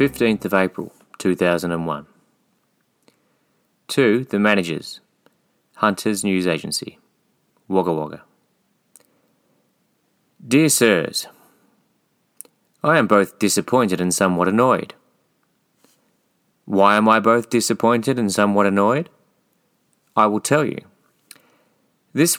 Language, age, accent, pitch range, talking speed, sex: English, 30-49, Australian, 95-125 Hz, 90 wpm, male